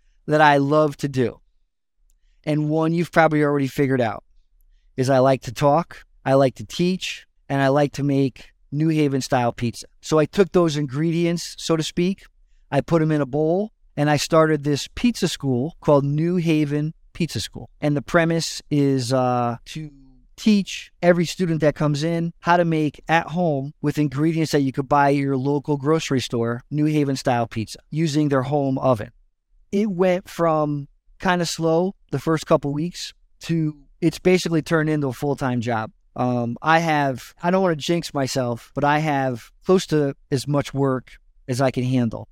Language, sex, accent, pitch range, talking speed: English, male, American, 130-160 Hz, 185 wpm